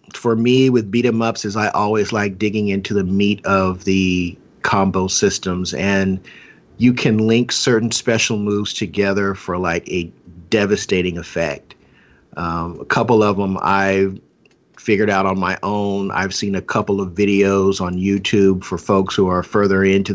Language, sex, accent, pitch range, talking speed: English, male, American, 95-110 Hz, 165 wpm